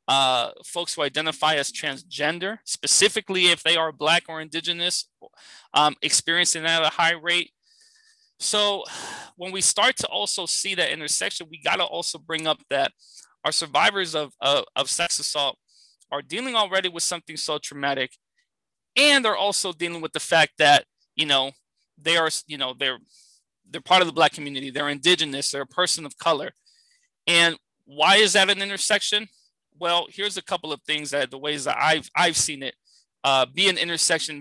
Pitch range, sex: 145-185 Hz, male